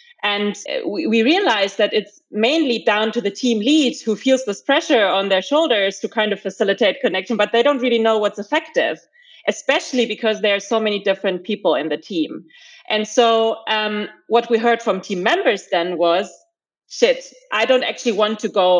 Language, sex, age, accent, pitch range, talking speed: English, female, 30-49, German, 190-235 Hz, 190 wpm